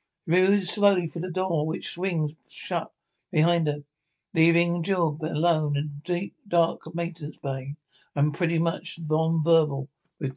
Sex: male